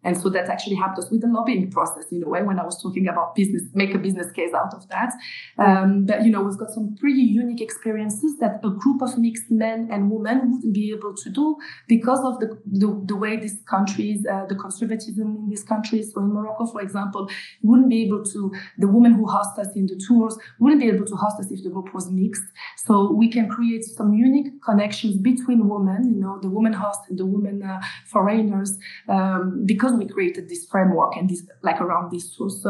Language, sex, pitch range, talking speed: English, female, 195-225 Hz, 225 wpm